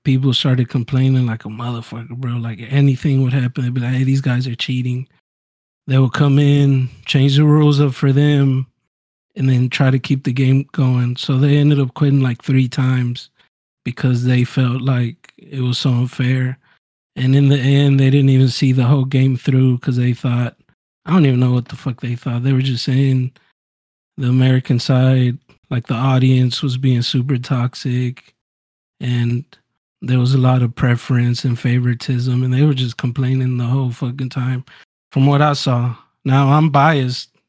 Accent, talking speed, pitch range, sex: American, 185 wpm, 125-140 Hz, male